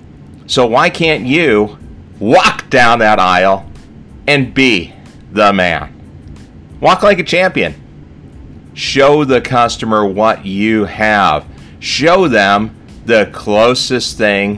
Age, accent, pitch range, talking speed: 30-49, American, 85-125 Hz, 110 wpm